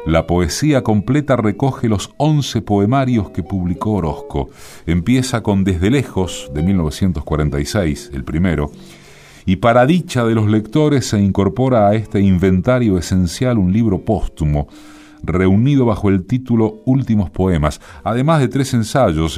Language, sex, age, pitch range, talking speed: Spanish, male, 40-59, 75-110 Hz, 135 wpm